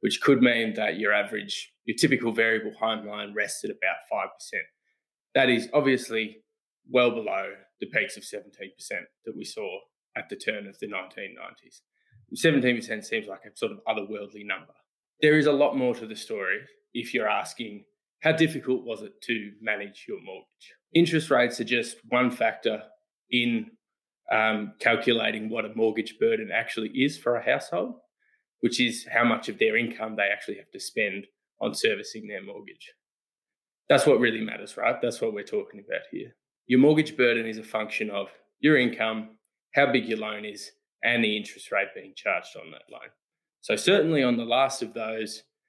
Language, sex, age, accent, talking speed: English, male, 20-39, Australian, 175 wpm